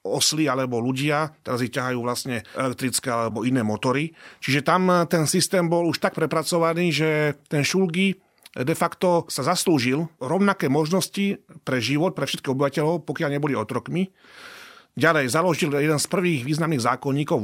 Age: 30-49